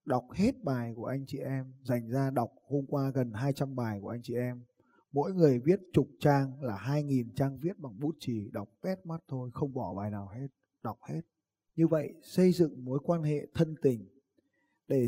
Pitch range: 125-165 Hz